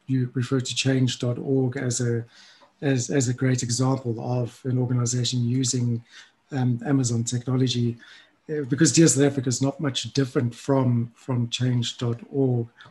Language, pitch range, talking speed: English, 125-140 Hz, 135 wpm